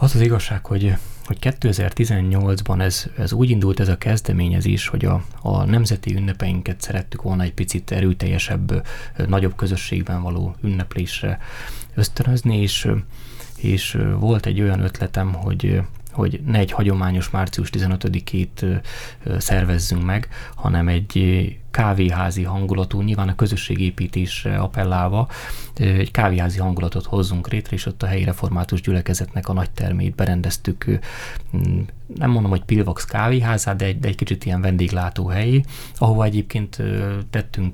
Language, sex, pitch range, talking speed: Hungarian, male, 95-115 Hz, 130 wpm